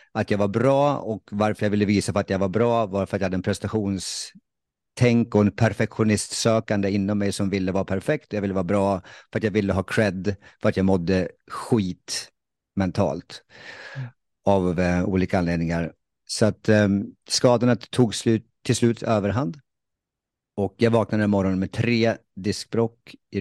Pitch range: 95-115 Hz